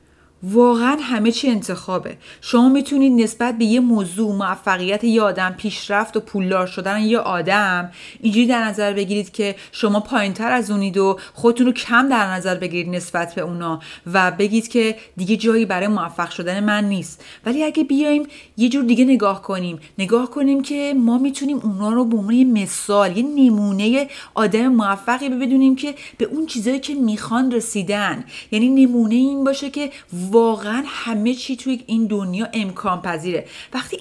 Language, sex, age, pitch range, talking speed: Persian, female, 30-49, 195-245 Hz, 160 wpm